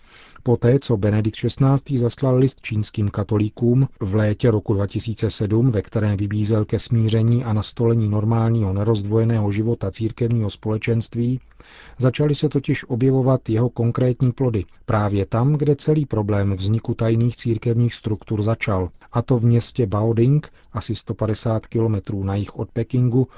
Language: Czech